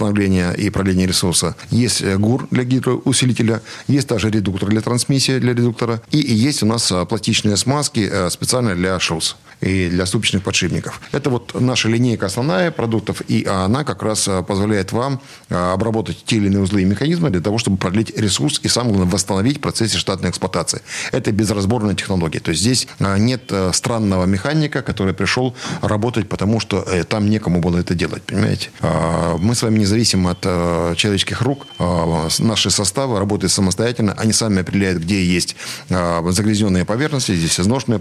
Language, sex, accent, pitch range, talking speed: Russian, male, native, 95-120 Hz, 160 wpm